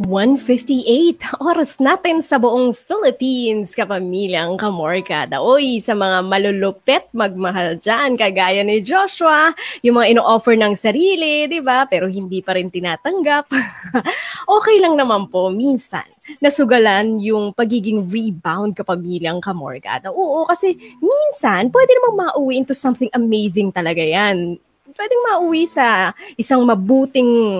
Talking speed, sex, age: 115 wpm, female, 20-39